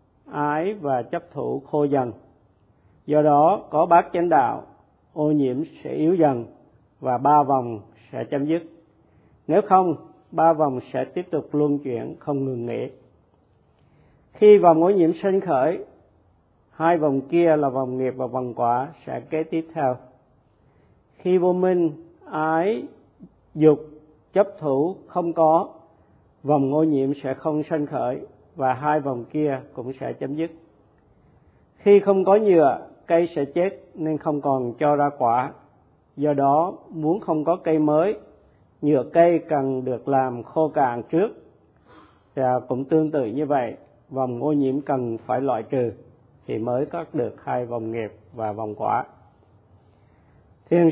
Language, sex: Vietnamese, male